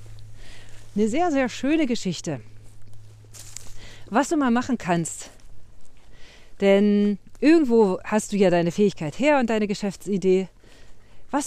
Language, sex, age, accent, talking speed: German, female, 40-59, German, 115 wpm